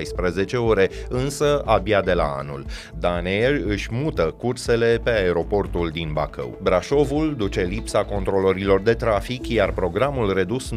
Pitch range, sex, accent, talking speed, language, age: 95-125 Hz, male, native, 135 wpm, Romanian, 30-49